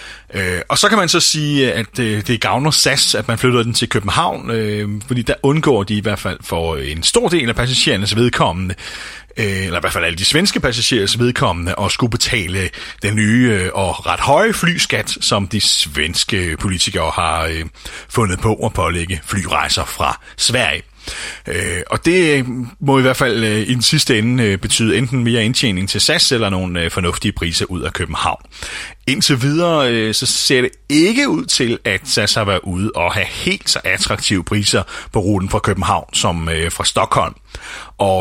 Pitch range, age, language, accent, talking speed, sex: 95-130 Hz, 30-49, Danish, native, 175 wpm, male